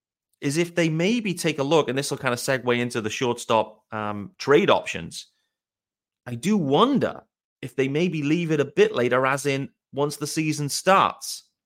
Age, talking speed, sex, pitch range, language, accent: 30-49, 185 wpm, male, 120-180 Hz, English, British